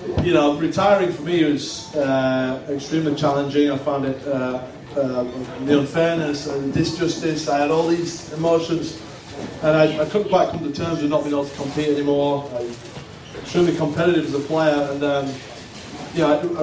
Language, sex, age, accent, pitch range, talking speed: English, male, 30-49, British, 135-155 Hz, 185 wpm